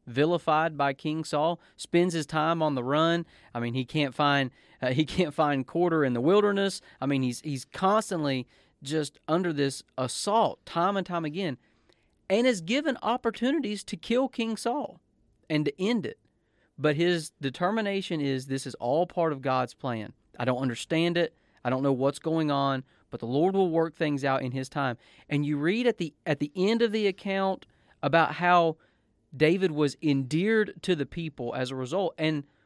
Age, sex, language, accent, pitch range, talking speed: 30-49, male, English, American, 130-175 Hz, 185 wpm